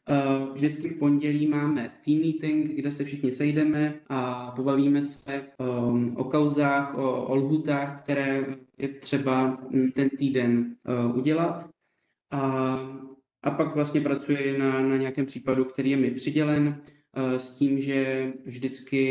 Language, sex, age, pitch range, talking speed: Czech, male, 20-39, 130-145 Hz, 130 wpm